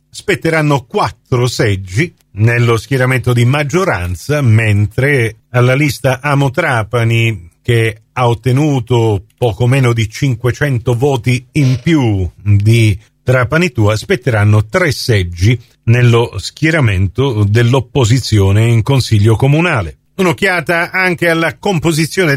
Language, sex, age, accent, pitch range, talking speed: Italian, male, 40-59, native, 120-165 Hz, 100 wpm